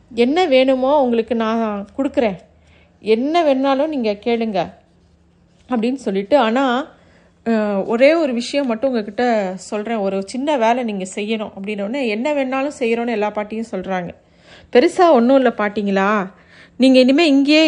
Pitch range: 210-270 Hz